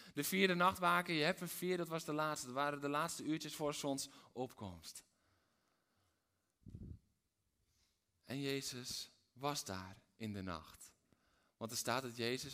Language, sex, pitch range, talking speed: Dutch, male, 110-140 Hz, 145 wpm